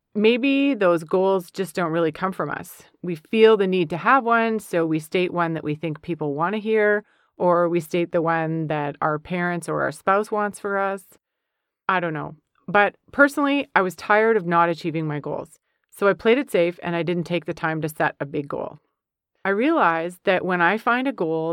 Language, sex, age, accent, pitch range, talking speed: English, female, 30-49, American, 165-220 Hz, 215 wpm